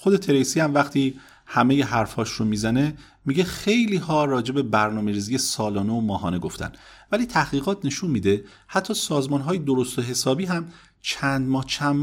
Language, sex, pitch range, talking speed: Persian, male, 110-160 Hz, 165 wpm